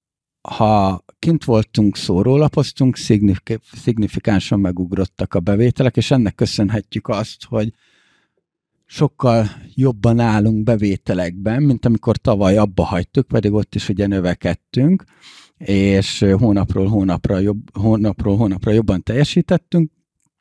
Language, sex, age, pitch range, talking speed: Hungarian, male, 50-69, 100-120 Hz, 105 wpm